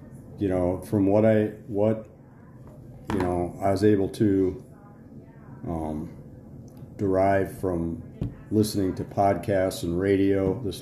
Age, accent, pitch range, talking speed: 40-59, American, 95-120 Hz, 115 wpm